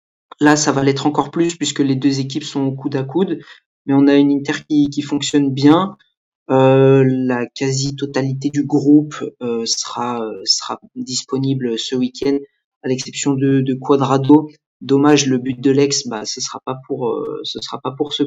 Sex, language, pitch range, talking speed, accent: male, French, 130-150 Hz, 185 wpm, French